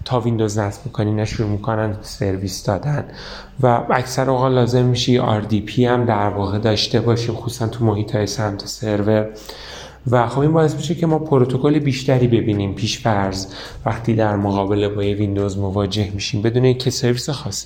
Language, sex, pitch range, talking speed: Persian, male, 110-140 Hz, 155 wpm